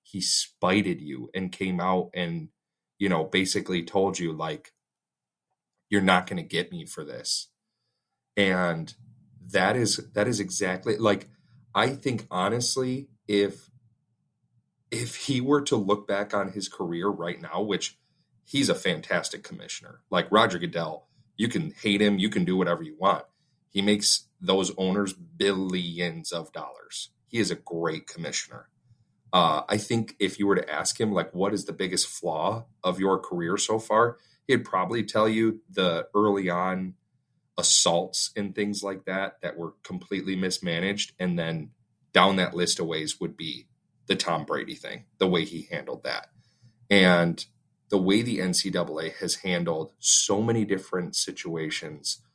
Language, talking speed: English, 160 wpm